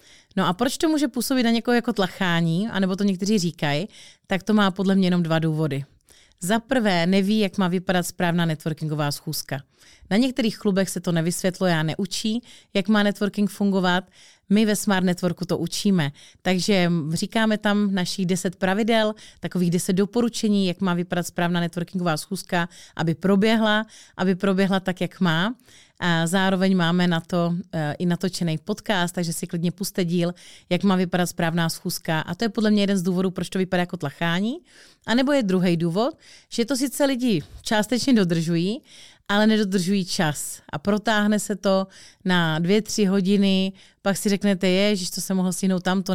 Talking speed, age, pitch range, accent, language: 175 wpm, 30-49, 175-210 Hz, native, Czech